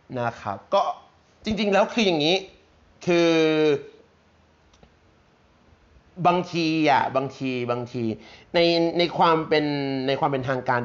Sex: male